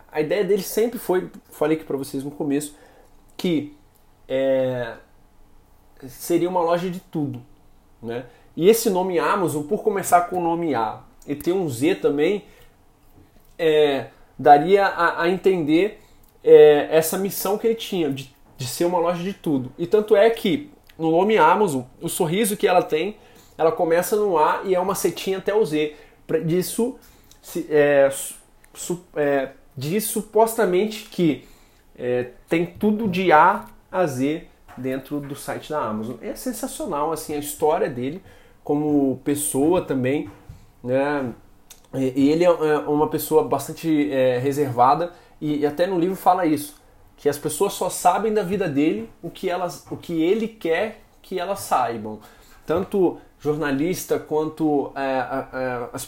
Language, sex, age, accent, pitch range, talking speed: Portuguese, male, 20-39, Brazilian, 140-190 Hz, 145 wpm